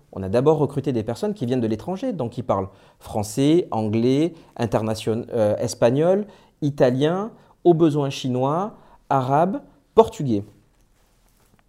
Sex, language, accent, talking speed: male, French, French, 120 wpm